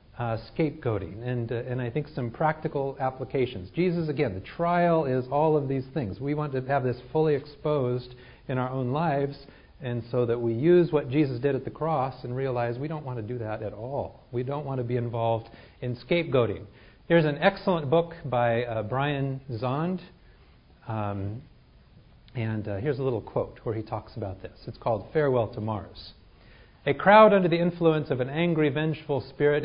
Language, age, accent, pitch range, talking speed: English, 40-59, American, 125-160 Hz, 190 wpm